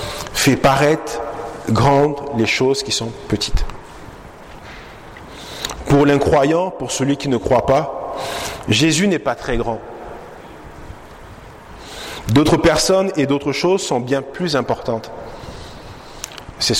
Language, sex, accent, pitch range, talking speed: English, male, French, 115-150 Hz, 110 wpm